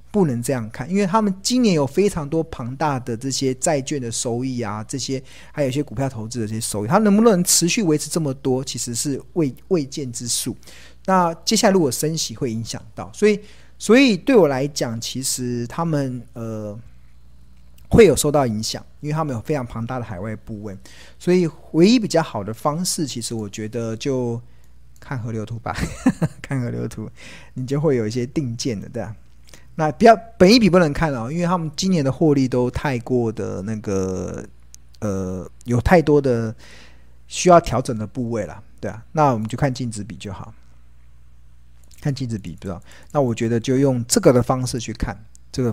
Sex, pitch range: male, 110-155 Hz